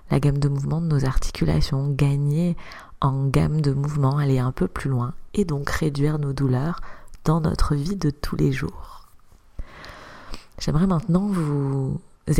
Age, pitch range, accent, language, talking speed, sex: 30-49, 140-165 Hz, French, French, 155 wpm, female